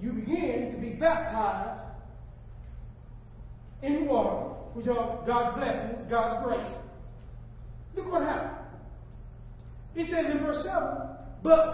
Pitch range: 210-320 Hz